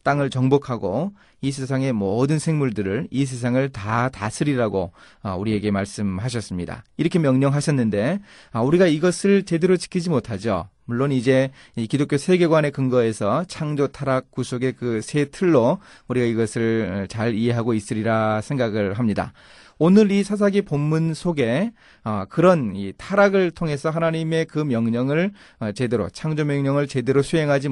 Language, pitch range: Korean, 120-175 Hz